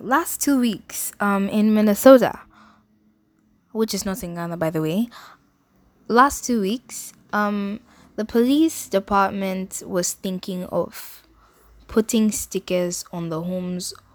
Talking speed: 125 wpm